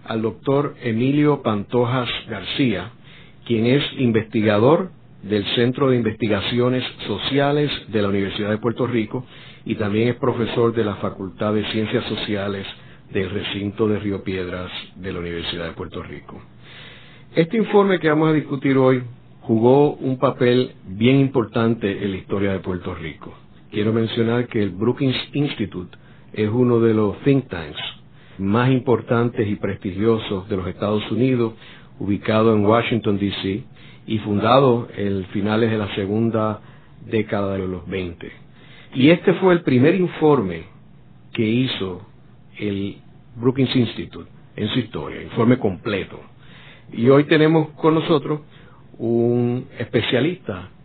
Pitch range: 105-130 Hz